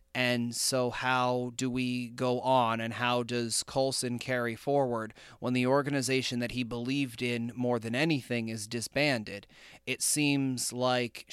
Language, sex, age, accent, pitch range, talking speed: English, male, 30-49, American, 115-135 Hz, 150 wpm